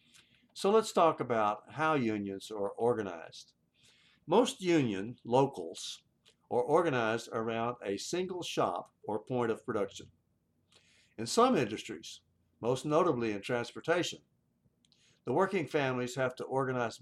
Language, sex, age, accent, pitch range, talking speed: English, male, 60-79, American, 105-150 Hz, 120 wpm